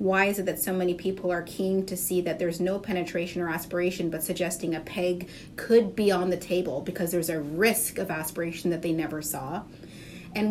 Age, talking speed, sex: 30-49, 210 wpm, female